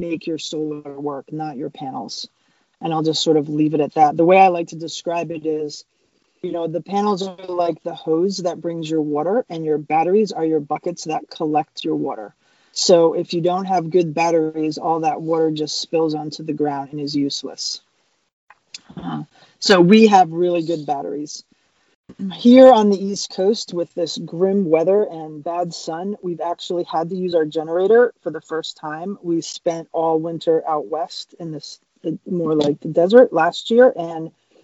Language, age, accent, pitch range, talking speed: English, 20-39, American, 155-180 Hz, 185 wpm